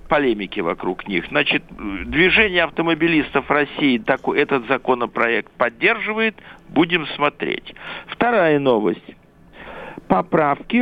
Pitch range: 160-225 Hz